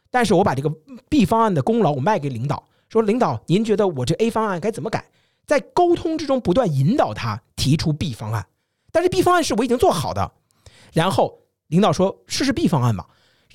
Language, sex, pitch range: Chinese, male, 135-215 Hz